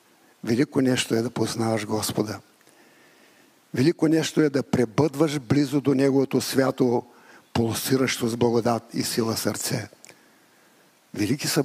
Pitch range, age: 115-150 Hz, 60-79